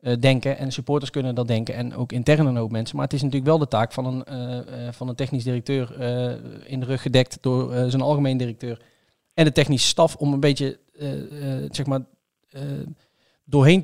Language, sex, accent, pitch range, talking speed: Dutch, male, Dutch, 125-145 Hz, 215 wpm